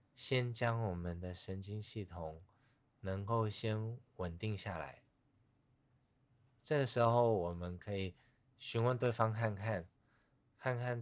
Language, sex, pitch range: Chinese, male, 90-125 Hz